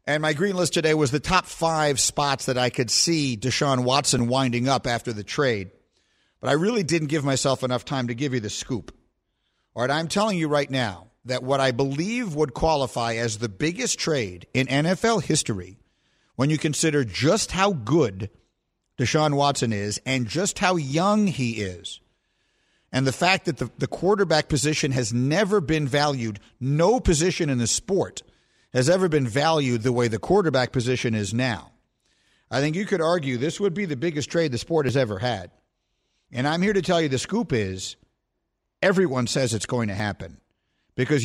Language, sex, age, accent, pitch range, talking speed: English, male, 50-69, American, 120-160 Hz, 190 wpm